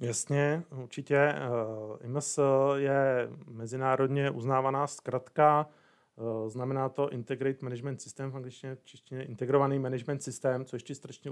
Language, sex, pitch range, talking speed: Czech, male, 120-135 Hz, 100 wpm